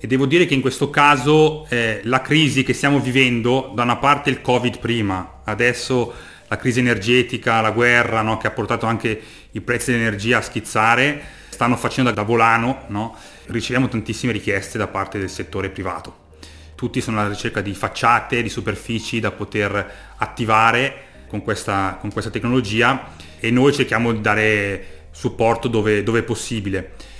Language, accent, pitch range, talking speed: Italian, native, 105-125 Hz, 165 wpm